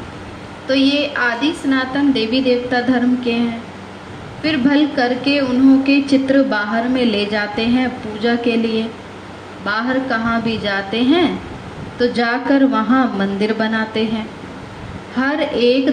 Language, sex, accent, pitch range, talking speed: Hindi, female, native, 210-260 Hz, 135 wpm